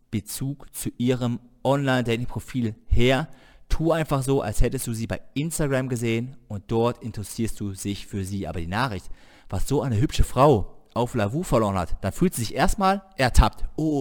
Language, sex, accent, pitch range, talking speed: German, male, German, 100-130 Hz, 175 wpm